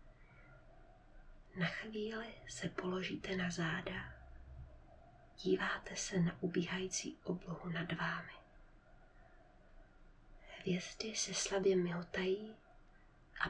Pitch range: 175-195 Hz